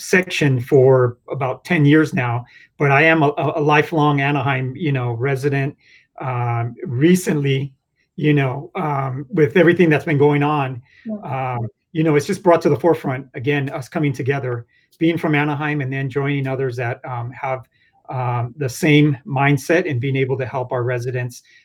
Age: 40-59